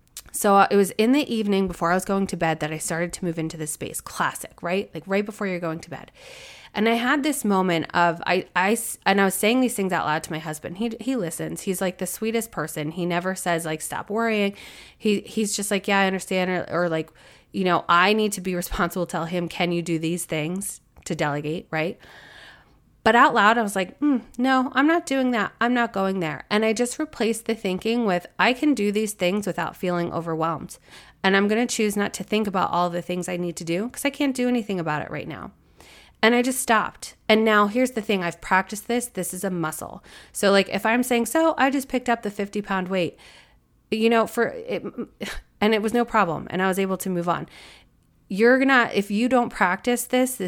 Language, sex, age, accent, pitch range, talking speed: English, female, 20-39, American, 175-225 Hz, 240 wpm